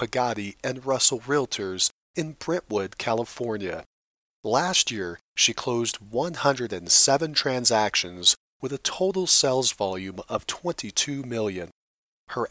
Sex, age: male, 40-59